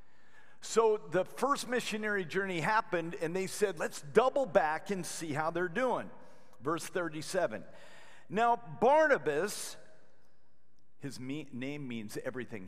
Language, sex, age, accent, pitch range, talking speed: English, male, 50-69, American, 165-215 Hz, 120 wpm